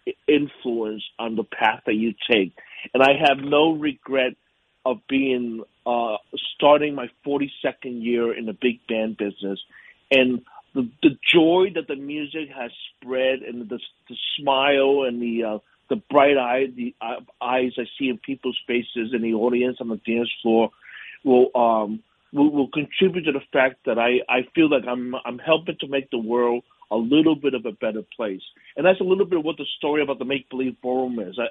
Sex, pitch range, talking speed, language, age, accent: male, 120-145 Hz, 190 wpm, English, 50-69, American